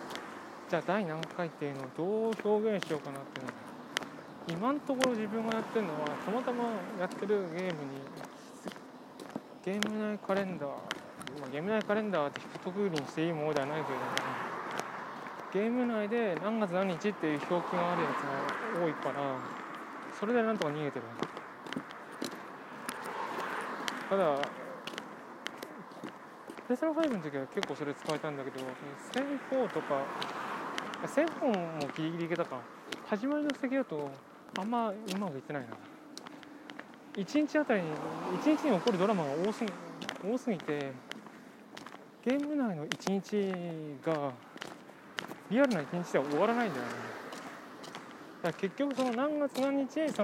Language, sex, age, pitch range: Japanese, male, 20-39, 155-245 Hz